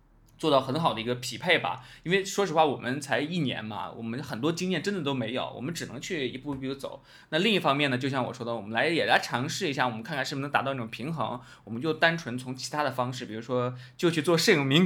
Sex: male